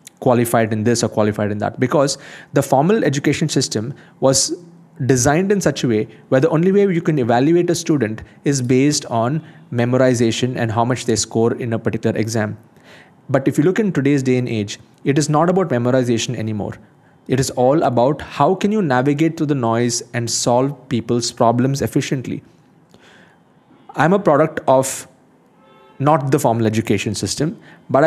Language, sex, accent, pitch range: English, male, Indian, 120-155 Hz